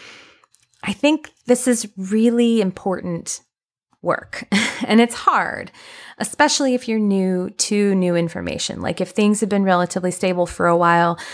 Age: 20-39